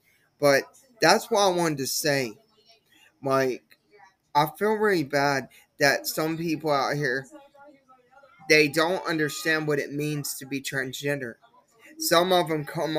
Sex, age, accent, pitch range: male, 20-39, American, 145-190 Hz